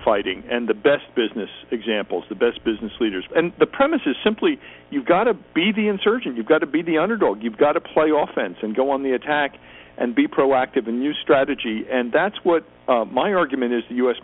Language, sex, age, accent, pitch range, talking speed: English, male, 50-69, American, 115-155 Hz, 220 wpm